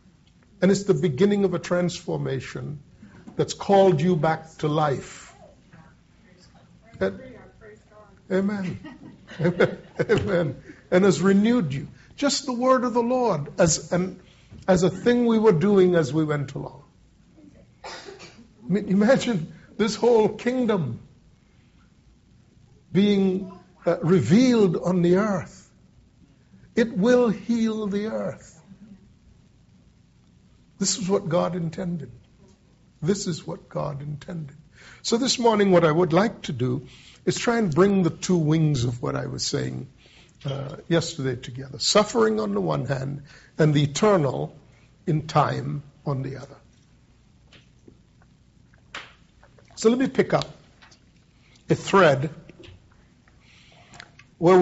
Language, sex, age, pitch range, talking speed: English, male, 60-79, 145-195 Hz, 120 wpm